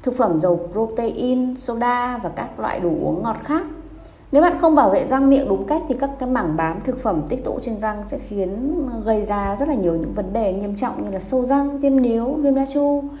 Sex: female